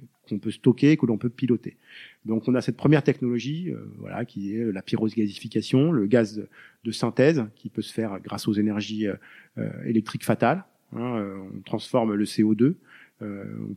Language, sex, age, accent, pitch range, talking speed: French, male, 40-59, French, 105-125 Hz, 185 wpm